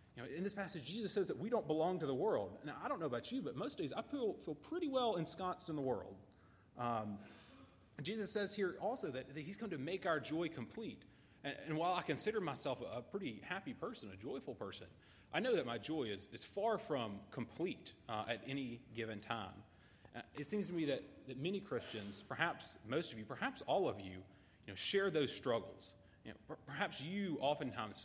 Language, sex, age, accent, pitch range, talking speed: English, male, 30-49, American, 110-180 Hz, 215 wpm